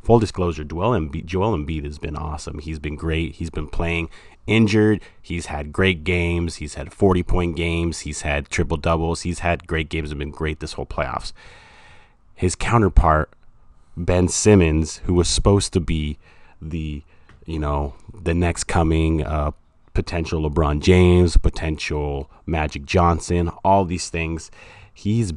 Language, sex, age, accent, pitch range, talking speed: English, male, 30-49, American, 75-90 Hz, 150 wpm